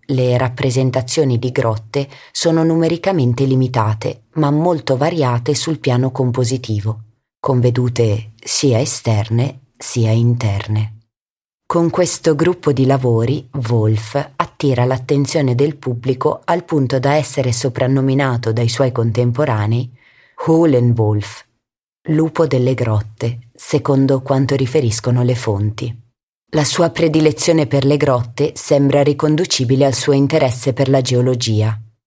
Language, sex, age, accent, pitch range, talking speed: German, female, 30-49, Italian, 120-145 Hz, 110 wpm